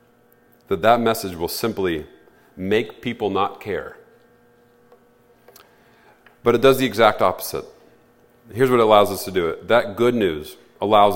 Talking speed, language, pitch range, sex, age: 145 wpm, English, 105-125 Hz, male, 40-59